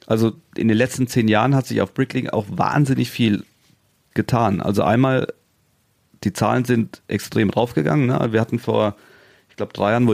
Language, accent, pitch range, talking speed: German, German, 105-120 Hz, 180 wpm